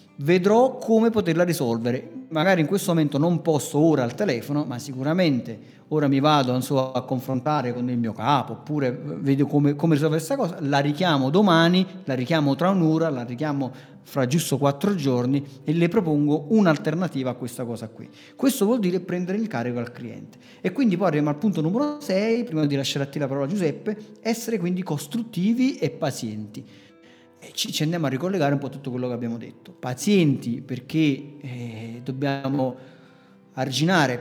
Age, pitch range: 40-59, 130-170 Hz